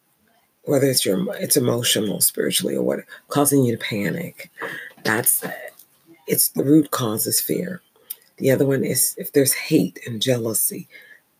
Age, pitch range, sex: 40-59, 125-155 Hz, female